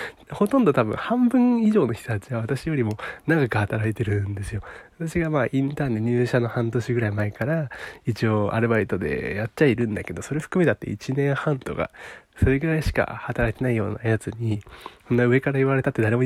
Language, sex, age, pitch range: Japanese, male, 20-39, 110-150 Hz